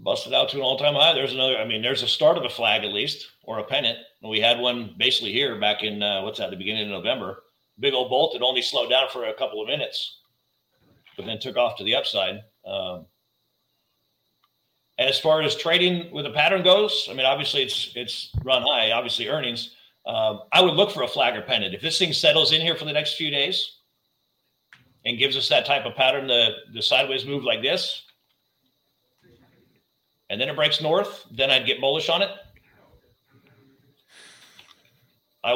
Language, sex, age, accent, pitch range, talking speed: English, male, 50-69, American, 120-150 Hz, 200 wpm